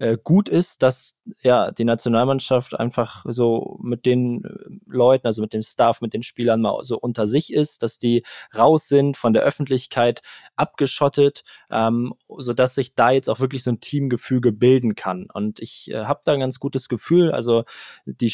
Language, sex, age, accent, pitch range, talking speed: German, male, 20-39, German, 115-135 Hz, 180 wpm